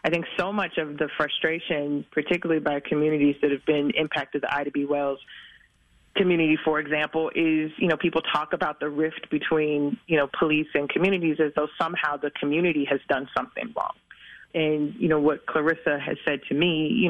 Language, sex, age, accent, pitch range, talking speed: English, female, 30-49, American, 150-175 Hz, 190 wpm